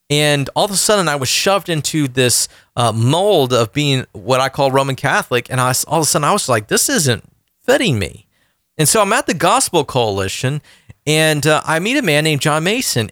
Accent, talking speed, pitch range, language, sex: American, 220 wpm, 125-170 Hz, English, male